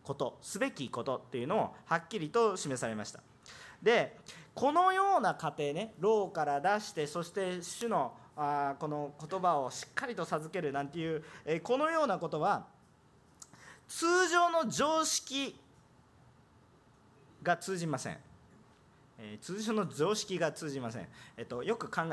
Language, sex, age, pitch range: Japanese, male, 40-59, 140-220 Hz